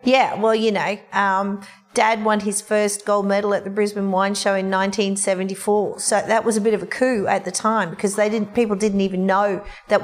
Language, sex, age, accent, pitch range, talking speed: English, female, 40-59, Australian, 195-220 Hz, 220 wpm